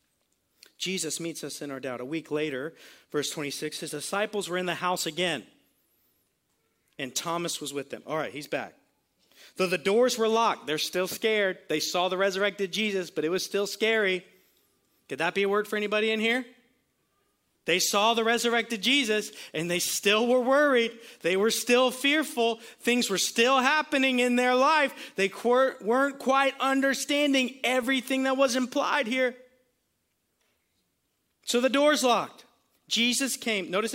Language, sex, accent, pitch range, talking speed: English, male, American, 170-245 Hz, 160 wpm